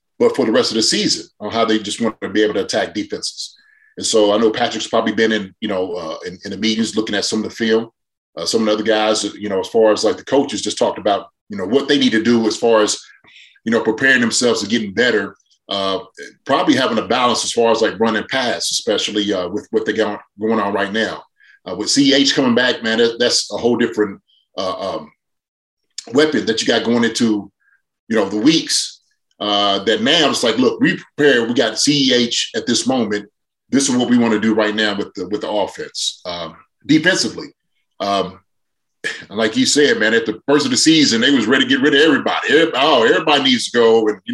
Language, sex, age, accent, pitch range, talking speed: English, male, 30-49, American, 110-140 Hz, 235 wpm